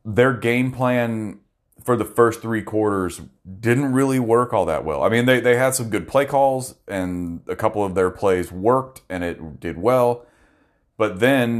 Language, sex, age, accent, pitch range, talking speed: English, male, 30-49, American, 85-110 Hz, 185 wpm